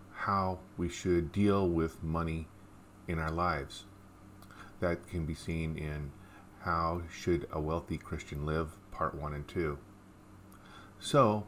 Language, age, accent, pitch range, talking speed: English, 40-59, American, 90-105 Hz, 130 wpm